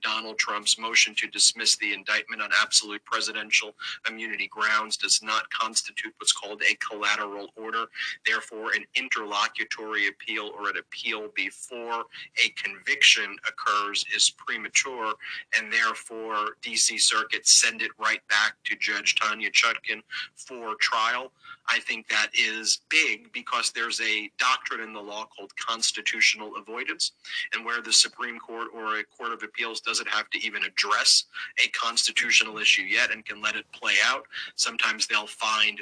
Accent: American